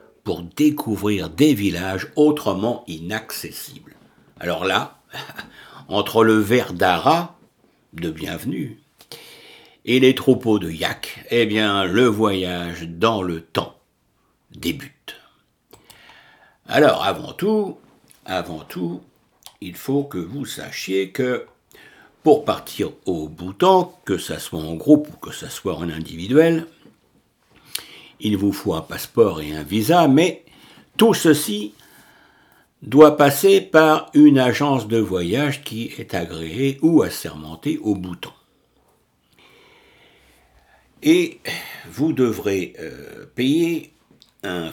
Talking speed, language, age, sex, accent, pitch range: 115 wpm, French, 60-79, male, French, 95-150 Hz